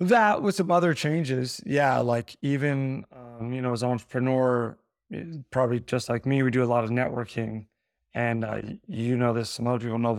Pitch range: 115-130 Hz